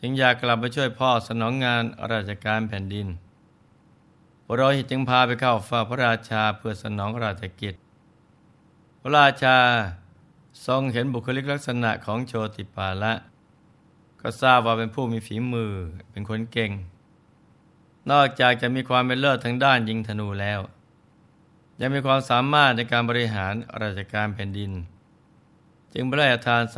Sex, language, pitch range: male, Thai, 105-130 Hz